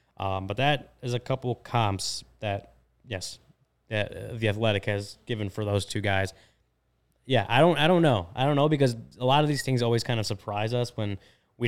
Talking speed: 195 wpm